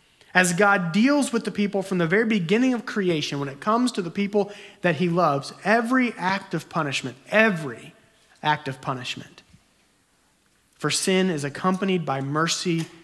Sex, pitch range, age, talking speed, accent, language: male, 160-210 Hz, 30-49, 160 wpm, American, English